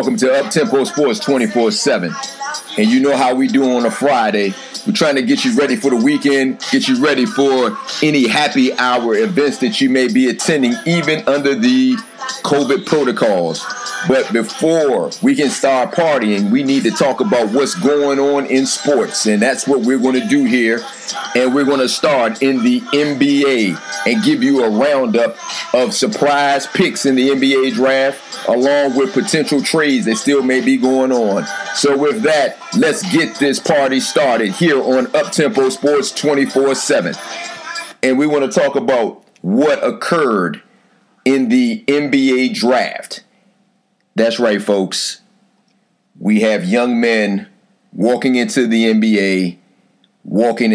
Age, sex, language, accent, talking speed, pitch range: 40-59, male, English, American, 155 wpm, 120-195 Hz